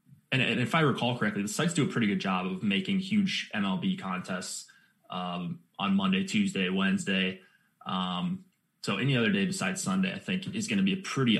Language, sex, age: English, male, 20-39